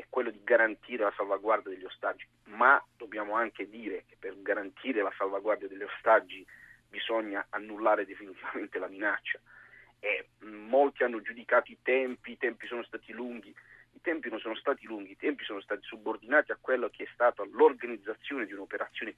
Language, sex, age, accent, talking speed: Italian, male, 40-59, native, 170 wpm